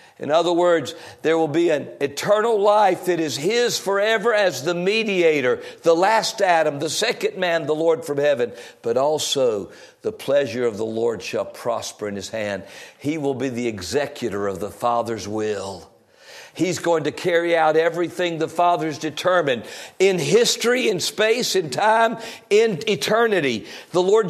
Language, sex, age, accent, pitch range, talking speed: English, male, 50-69, American, 150-240 Hz, 165 wpm